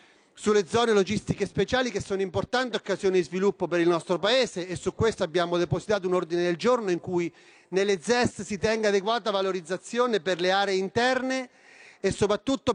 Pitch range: 180-225 Hz